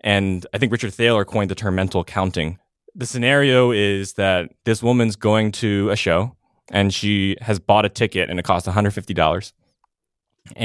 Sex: male